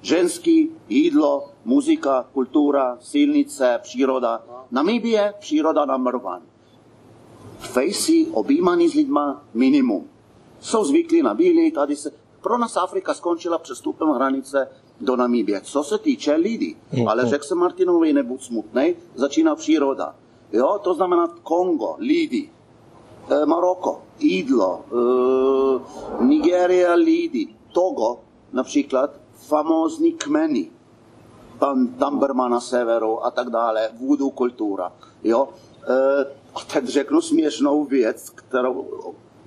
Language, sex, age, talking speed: Czech, male, 40-59, 110 wpm